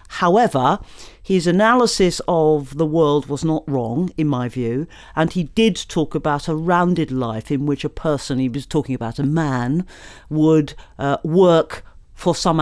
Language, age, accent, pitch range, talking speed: English, 50-69, British, 150-190 Hz, 165 wpm